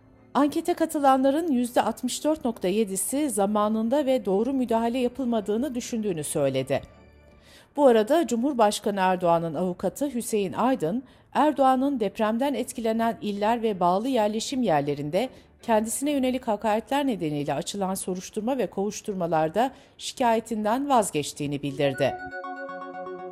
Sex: female